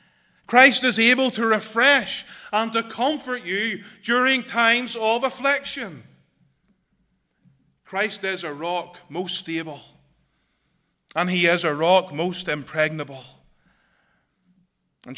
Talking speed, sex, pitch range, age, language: 105 wpm, male, 155-225 Hz, 30-49, English